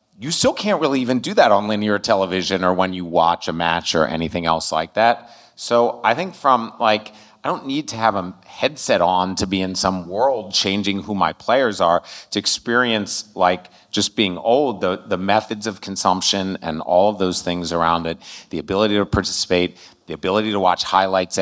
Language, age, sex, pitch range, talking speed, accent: English, 30-49, male, 95-120 Hz, 200 wpm, American